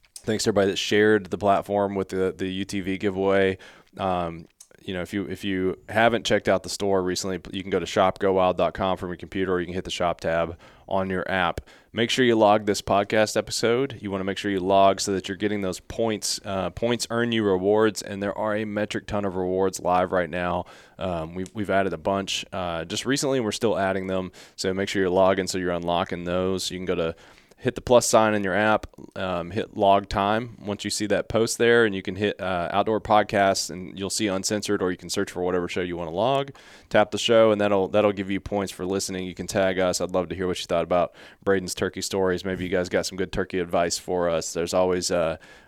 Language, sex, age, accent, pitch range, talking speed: English, male, 20-39, American, 90-105 Hz, 240 wpm